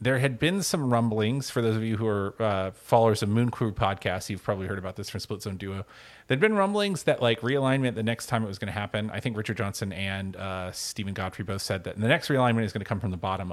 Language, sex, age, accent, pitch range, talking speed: English, male, 30-49, American, 100-125 Hz, 270 wpm